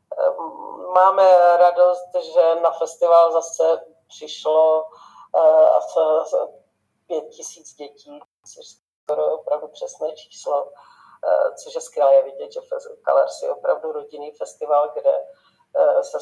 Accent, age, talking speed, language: native, 40-59, 100 wpm, Czech